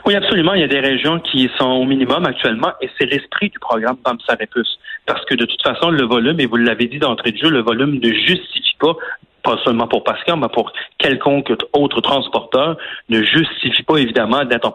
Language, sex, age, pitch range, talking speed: French, male, 40-59, 120-155 Hz, 210 wpm